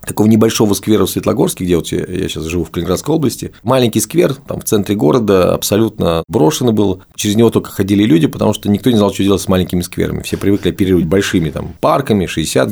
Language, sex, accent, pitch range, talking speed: Russian, male, native, 85-110 Hz, 210 wpm